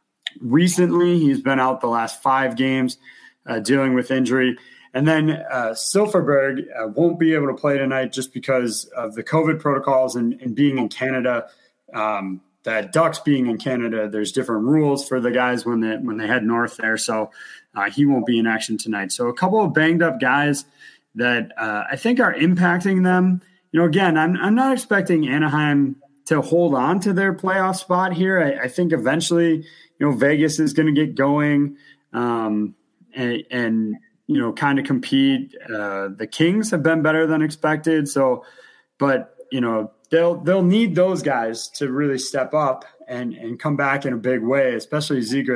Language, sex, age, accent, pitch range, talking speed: English, male, 30-49, American, 125-165 Hz, 185 wpm